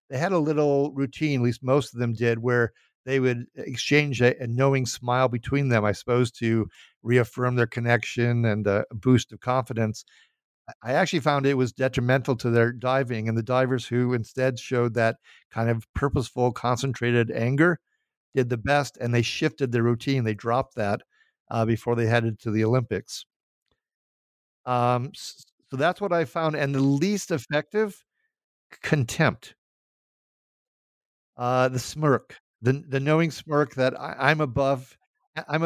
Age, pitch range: 50-69, 120-150 Hz